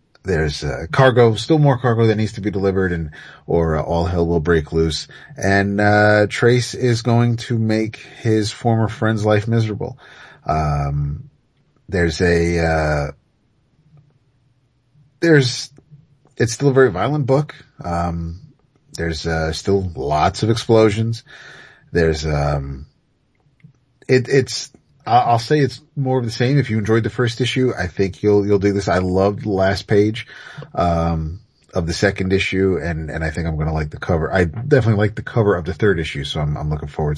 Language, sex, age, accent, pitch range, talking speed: English, male, 30-49, American, 85-120 Hz, 175 wpm